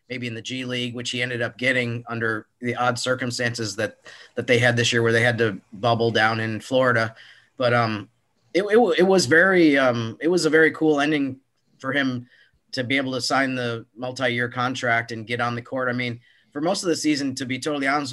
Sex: male